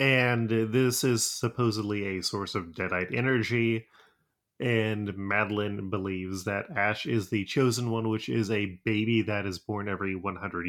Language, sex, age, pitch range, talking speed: English, male, 30-49, 105-125 Hz, 150 wpm